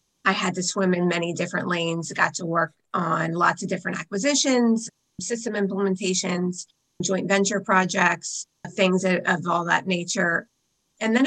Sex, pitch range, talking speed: female, 180-200 Hz, 150 wpm